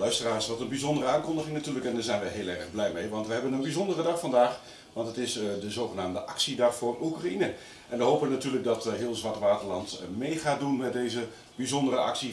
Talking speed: 215 wpm